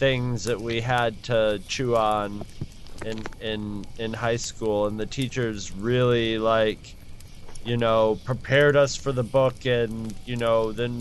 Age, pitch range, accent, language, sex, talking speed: 30-49, 105-120 Hz, American, English, male, 155 wpm